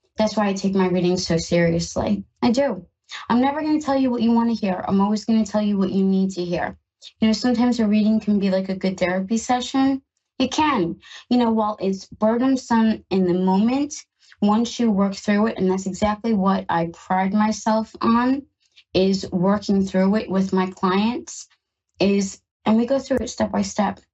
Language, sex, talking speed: English, female, 205 wpm